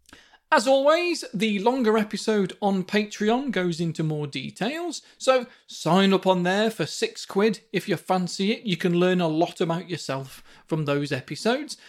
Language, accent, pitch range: English, British, 170-235 Hz